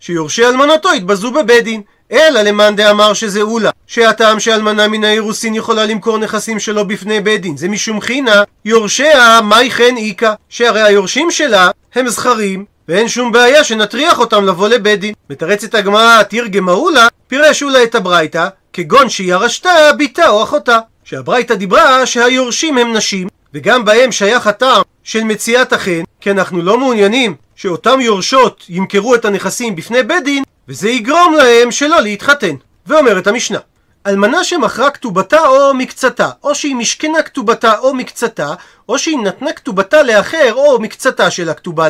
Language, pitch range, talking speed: Hebrew, 205-265 Hz, 155 wpm